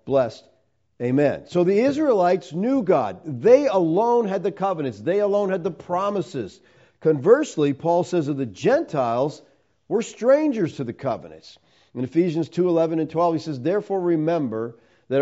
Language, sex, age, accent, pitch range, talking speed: English, male, 50-69, American, 130-175 Hz, 155 wpm